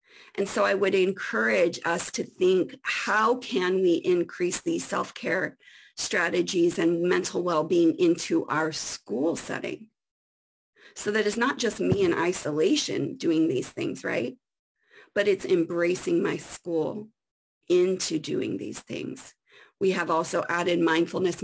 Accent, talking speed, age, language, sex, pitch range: American, 135 wpm, 40-59, English, female, 175-240 Hz